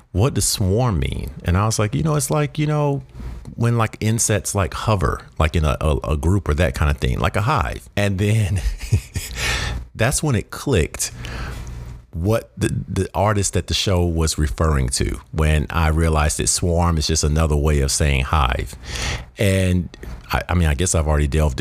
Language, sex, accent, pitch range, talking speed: English, male, American, 75-105 Hz, 195 wpm